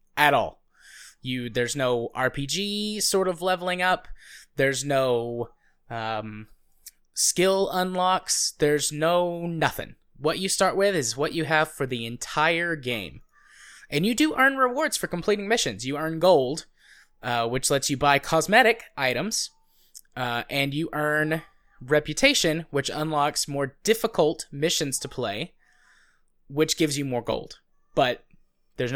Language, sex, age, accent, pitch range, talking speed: English, male, 20-39, American, 130-185 Hz, 140 wpm